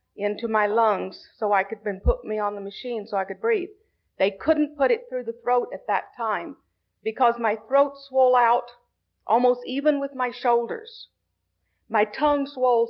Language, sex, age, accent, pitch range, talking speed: English, female, 50-69, American, 195-245 Hz, 180 wpm